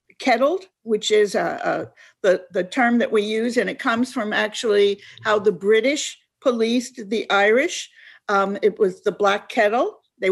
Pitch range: 210-265 Hz